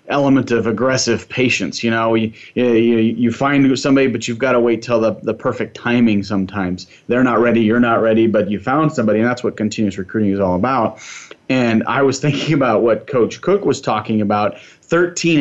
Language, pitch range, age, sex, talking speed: English, 105-130 Hz, 30-49, male, 205 wpm